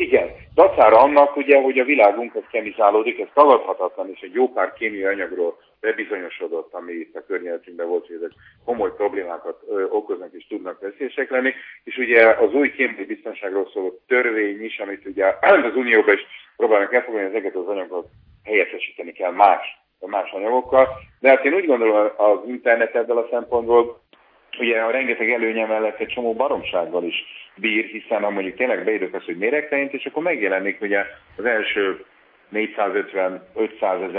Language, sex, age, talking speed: Hungarian, male, 40-59, 160 wpm